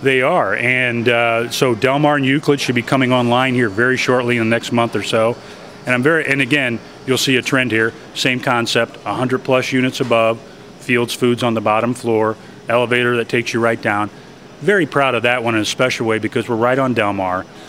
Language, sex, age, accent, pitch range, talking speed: English, male, 40-59, American, 115-130 Hz, 220 wpm